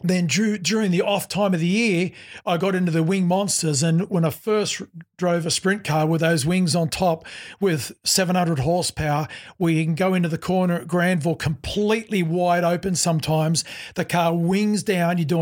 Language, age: English, 50-69